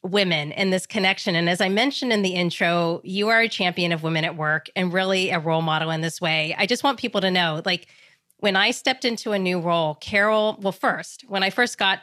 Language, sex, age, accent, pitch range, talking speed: English, female, 30-49, American, 175-245 Hz, 240 wpm